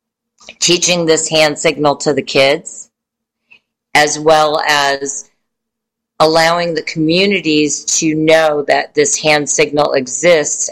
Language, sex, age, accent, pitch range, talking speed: English, female, 40-59, American, 145-175 Hz, 110 wpm